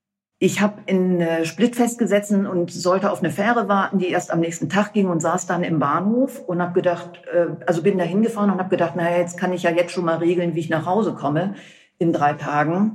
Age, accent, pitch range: 50-69, German, 160-190 Hz